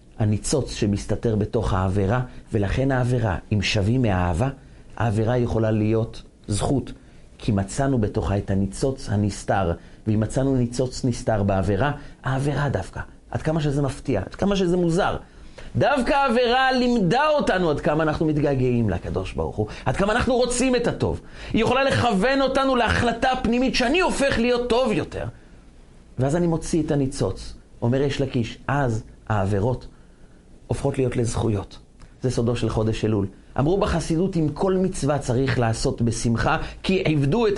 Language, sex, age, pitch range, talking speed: Hebrew, male, 40-59, 110-185 Hz, 145 wpm